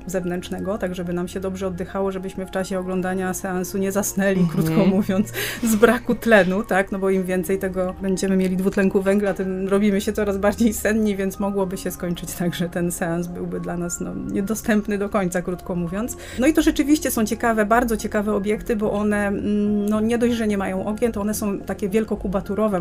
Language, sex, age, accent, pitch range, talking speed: Polish, female, 30-49, native, 185-210 Hz, 195 wpm